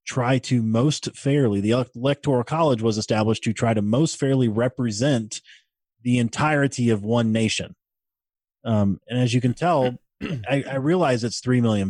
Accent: American